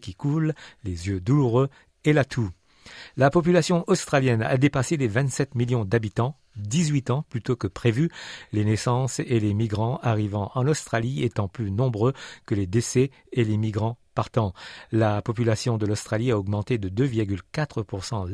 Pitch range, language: 110-135 Hz, French